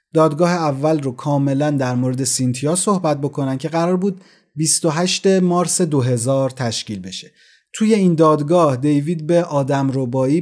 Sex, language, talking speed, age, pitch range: male, Persian, 140 wpm, 30-49, 130-170 Hz